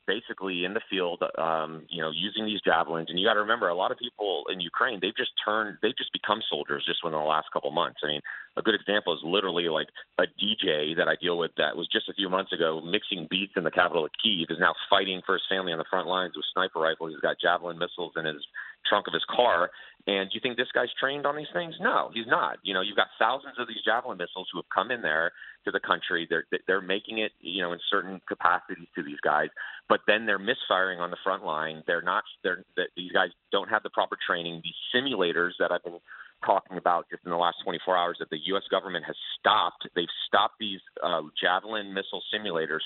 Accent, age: American, 30-49